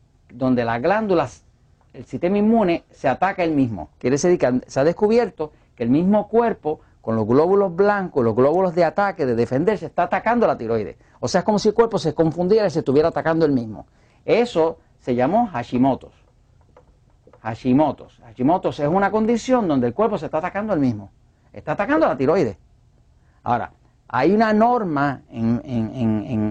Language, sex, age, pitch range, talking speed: Spanish, male, 50-69, 125-205 Hz, 170 wpm